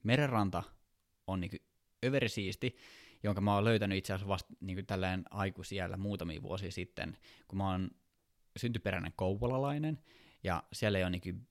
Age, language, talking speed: 20-39, Finnish, 135 wpm